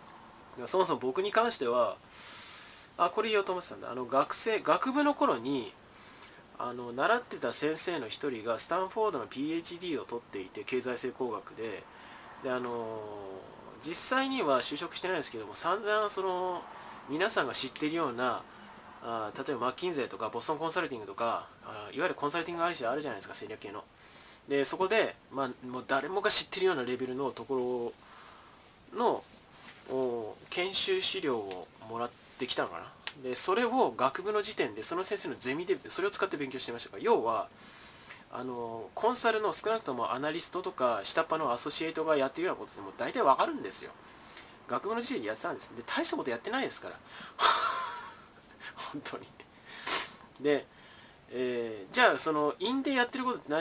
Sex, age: male, 20-39